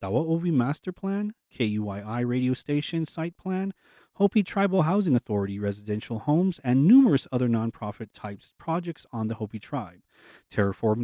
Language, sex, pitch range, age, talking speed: English, male, 110-165 Hz, 40-59, 135 wpm